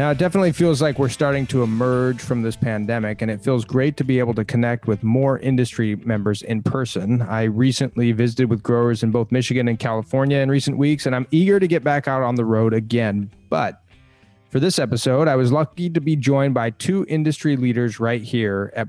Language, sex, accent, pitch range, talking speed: English, male, American, 115-140 Hz, 215 wpm